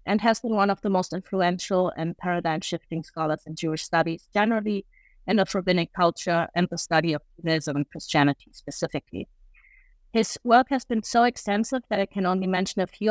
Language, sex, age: English, female, 30-49